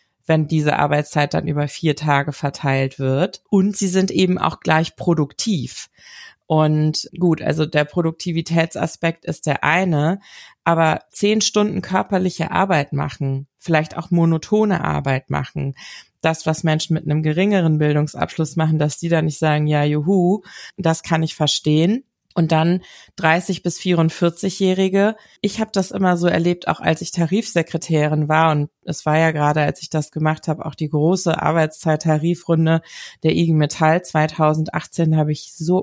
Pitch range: 155-180 Hz